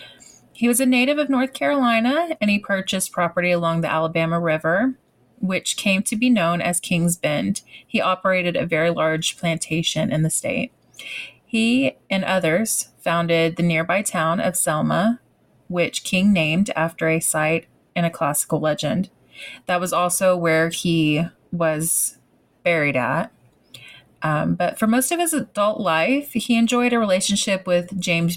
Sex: female